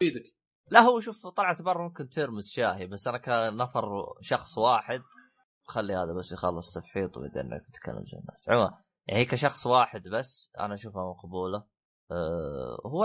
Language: Arabic